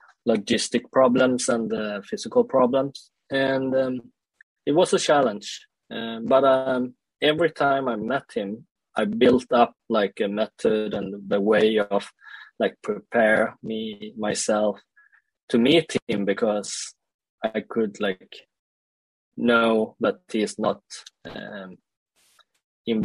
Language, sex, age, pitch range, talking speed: English, male, 20-39, 105-130 Hz, 120 wpm